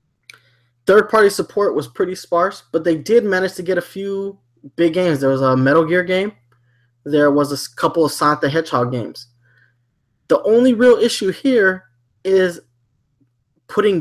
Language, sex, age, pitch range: English, male, 20-39, 130-180 Hz